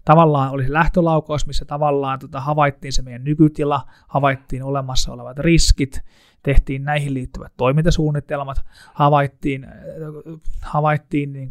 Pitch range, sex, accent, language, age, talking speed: 130-150 Hz, male, native, Finnish, 20-39, 115 wpm